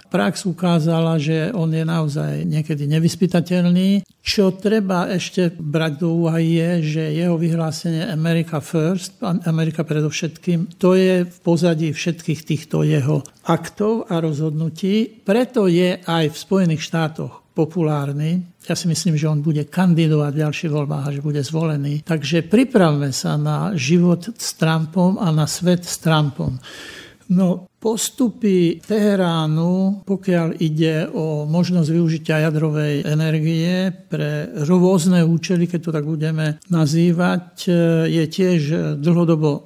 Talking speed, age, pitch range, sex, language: 130 wpm, 60-79, 155-180 Hz, male, Slovak